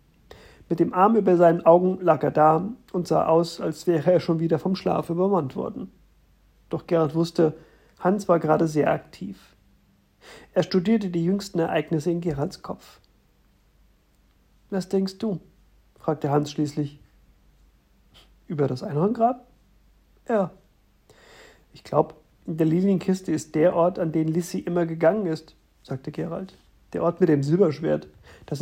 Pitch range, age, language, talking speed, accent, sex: 155-185 Hz, 50-69, German, 145 wpm, German, male